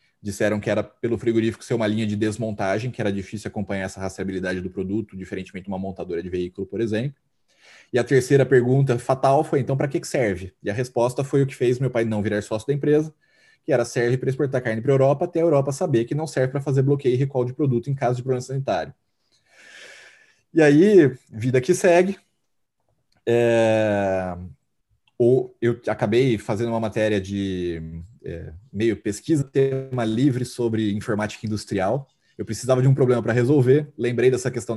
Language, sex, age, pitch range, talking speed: Portuguese, male, 20-39, 110-135 Hz, 190 wpm